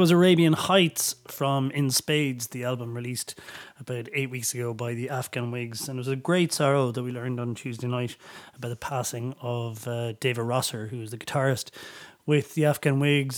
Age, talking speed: 30-49, 195 wpm